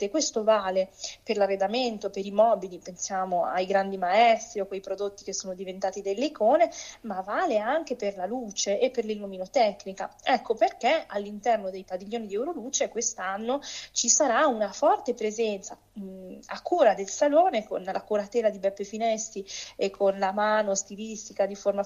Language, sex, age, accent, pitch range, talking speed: Italian, female, 20-39, native, 200-275 Hz, 160 wpm